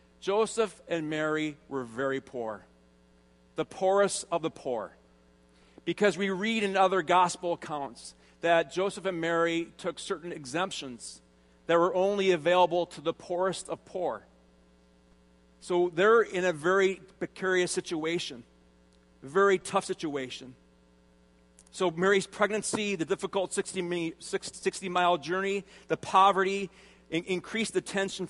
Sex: male